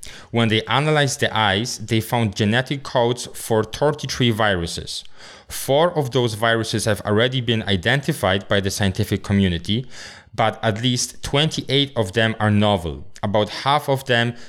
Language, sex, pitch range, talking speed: English, male, 100-115 Hz, 150 wpm